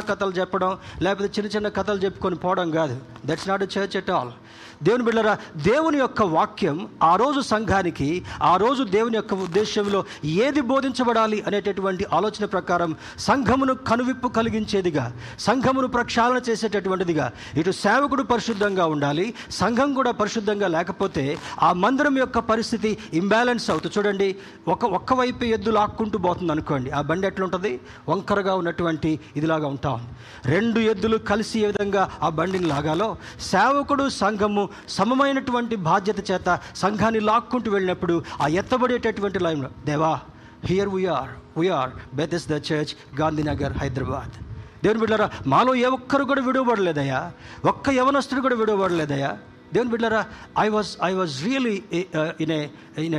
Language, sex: Telugu, male